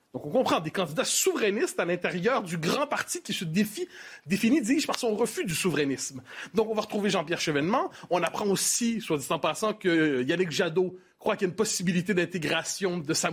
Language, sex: French, male